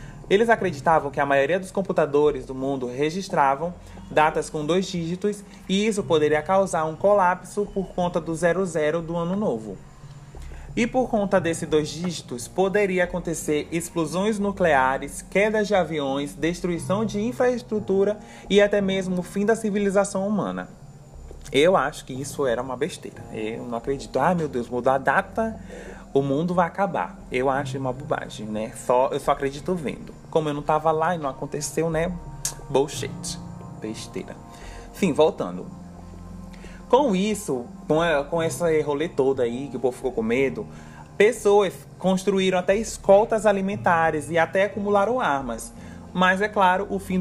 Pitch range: 145-195 Hz